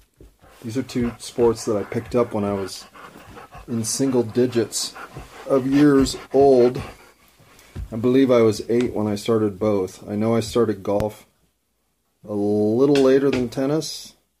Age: 30-49